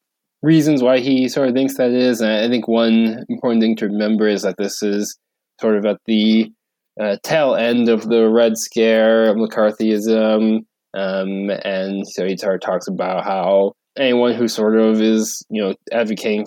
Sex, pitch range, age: male, 100-115 Hz, 20-39